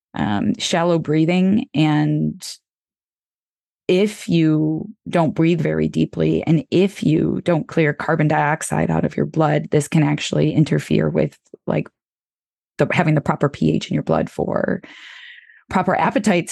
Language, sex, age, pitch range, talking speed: English, female, 20-39, 155-195 Hz, 135 wpm